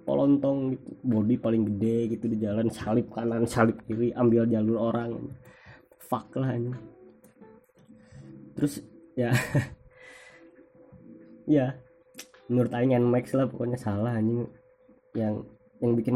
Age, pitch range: 20-39, 110-150 Hz